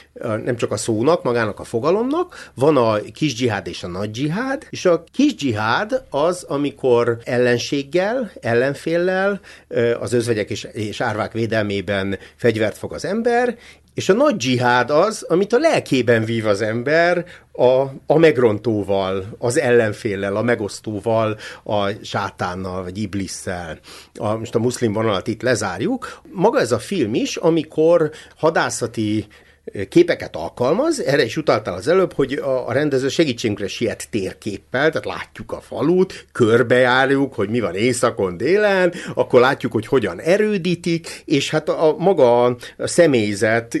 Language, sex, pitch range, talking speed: Hungarian, male, 105-155 Hz, 140 wpm